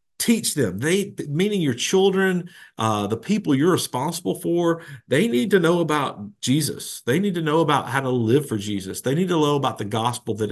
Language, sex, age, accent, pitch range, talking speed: English, male, 50-69, American, 115-150 Hz, 205 wpm